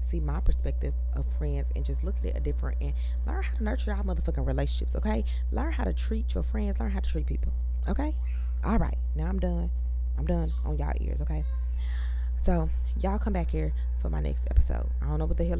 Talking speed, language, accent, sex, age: 225 wpm, English, American, female, 20-39